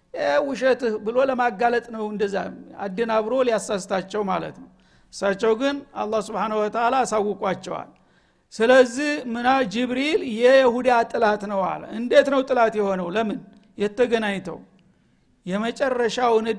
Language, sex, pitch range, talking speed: Amharic, male, 205-255 Hz, 90 wpm